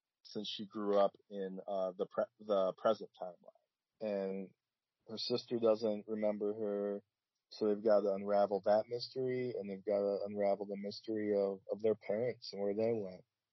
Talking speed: 175 wpm